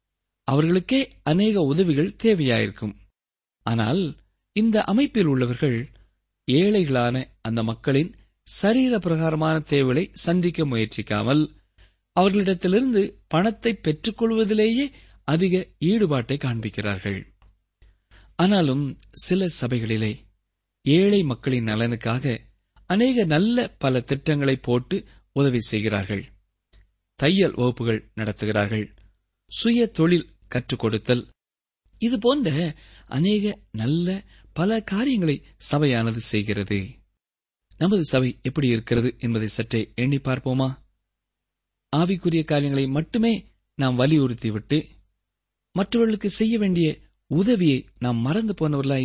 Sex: male